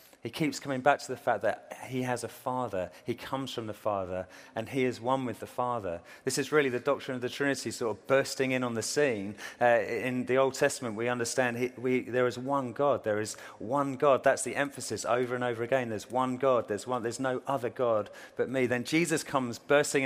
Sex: male